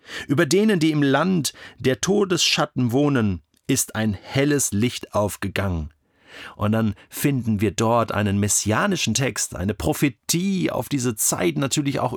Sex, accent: male, German